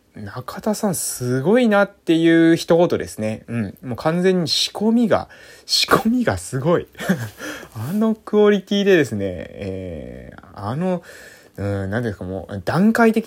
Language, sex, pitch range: Japanese, male, 105-165 Hz